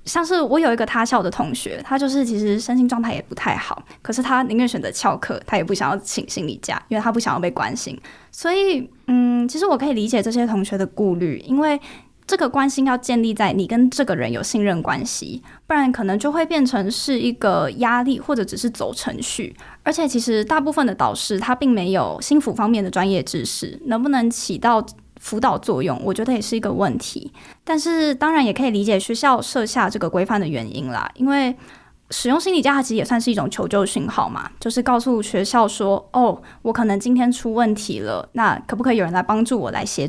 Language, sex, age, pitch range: Chinese, female, 10-29, 205-265 Hz